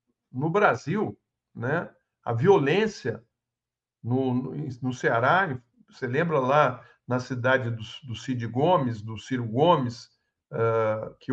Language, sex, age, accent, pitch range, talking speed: Portuguese, male, 60-79, Brazilian, 135-230 Hz, 120 wpm